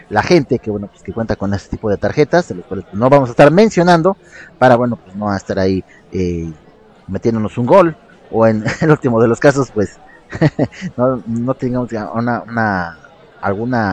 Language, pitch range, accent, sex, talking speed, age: Spanish, 105-155 Hz, Mexican, male, 190 wpm, 30-49